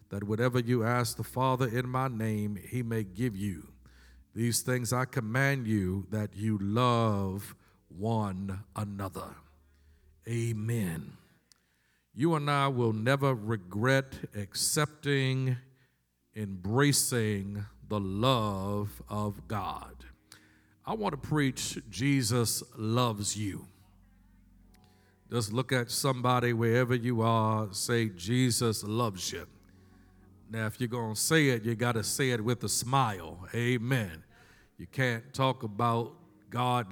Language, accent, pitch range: English, American, 100-125 Hz